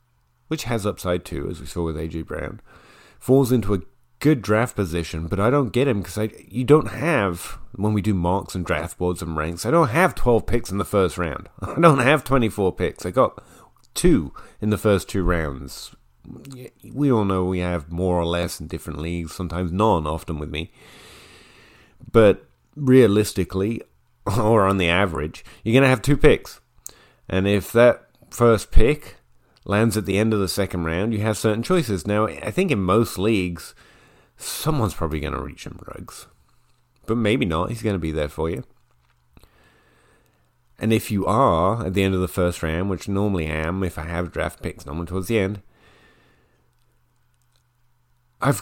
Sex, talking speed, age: male, 185 wpm, 30-49